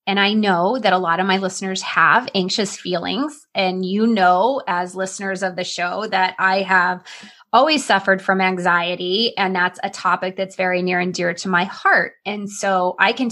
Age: 20-39